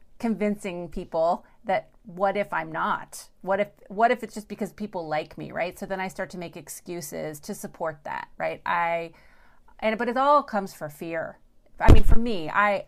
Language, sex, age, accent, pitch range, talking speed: English, female, 30-49, American, 180-230 Hz, 195 wpm